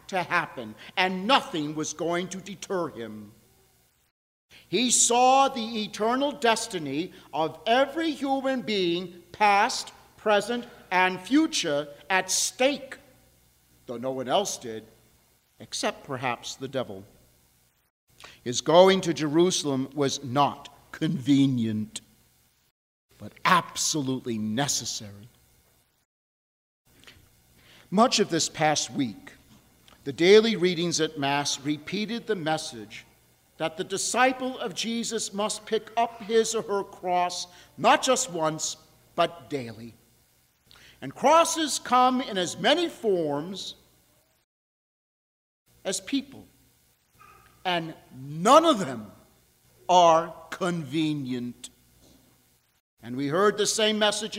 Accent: American